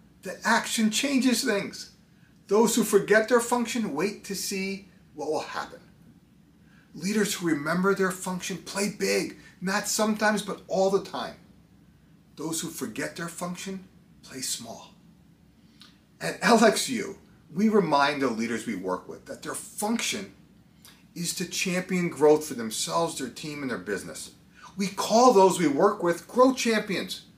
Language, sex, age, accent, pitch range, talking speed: English, male, 40-59, American, 165-215 Hz, 145 wpm